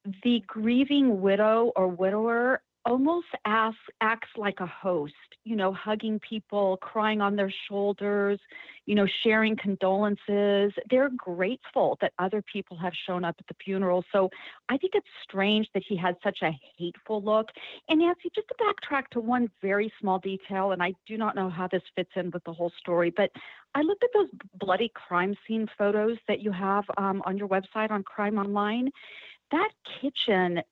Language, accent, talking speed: English, American, 175 wpm